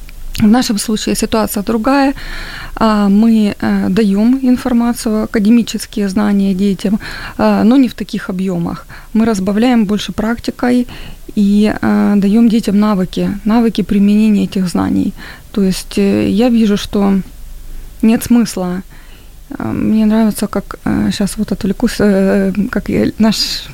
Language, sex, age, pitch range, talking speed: Ukrainian, female, 20-39, 195-225 Hz, 110 wpm